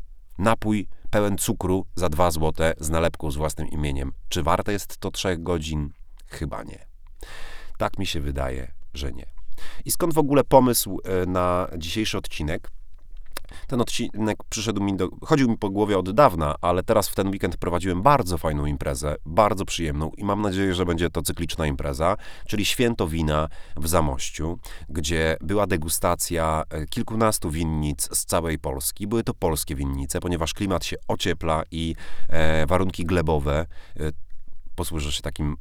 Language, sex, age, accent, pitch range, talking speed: Polish, male, 30-49, native, 75-100 Hz, 150 wpm